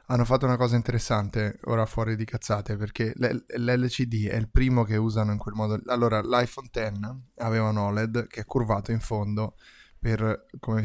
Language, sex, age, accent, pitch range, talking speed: Italian, male, 20-39, native, 105-120 Hz, 185 wpm